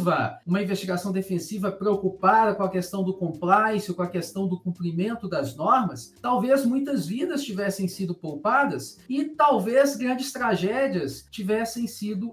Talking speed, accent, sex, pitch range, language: 135 wpm, Brazilian, male, 190-265 Hz, Portuguese